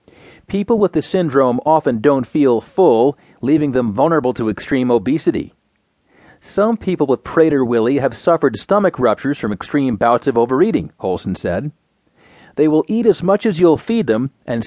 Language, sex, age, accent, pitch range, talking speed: English, male, 40-59, American, 125-170 Hz, 160 wpm